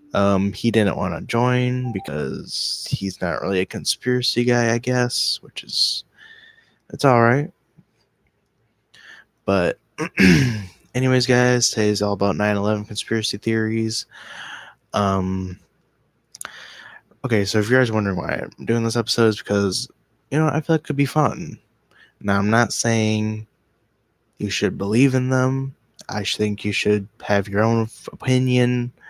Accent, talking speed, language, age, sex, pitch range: American, 145 wpm, English, 20-39, male, 100-125 Hz